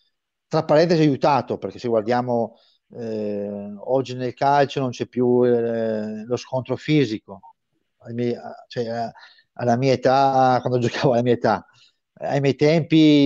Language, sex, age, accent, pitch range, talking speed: Italian, male, 40-59, native, 120-135 Hz, 145 wpm